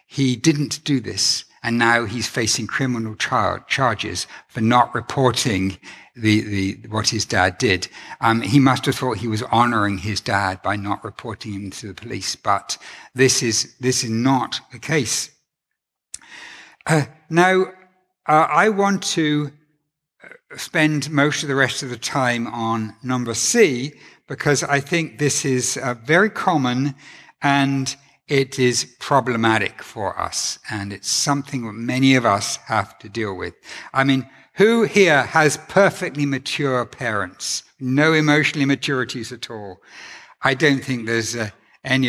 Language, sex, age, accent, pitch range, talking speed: English, male, 60-79, British, 115-150 Hz, 150 wpm